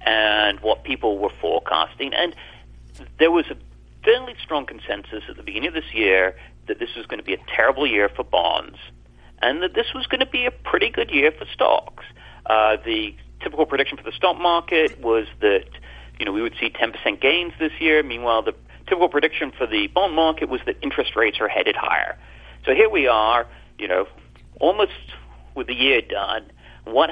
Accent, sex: American, male